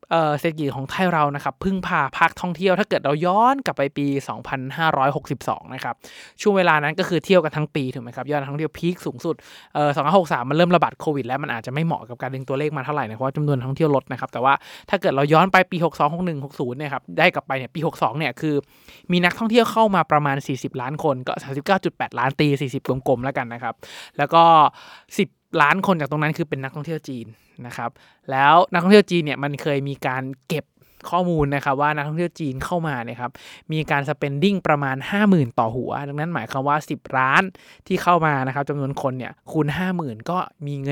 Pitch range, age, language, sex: 135-170 Hz, 20-39, Thai, male